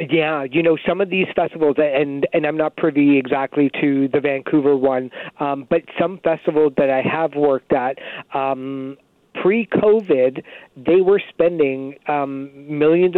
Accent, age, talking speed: American, 50-69, 150 wpm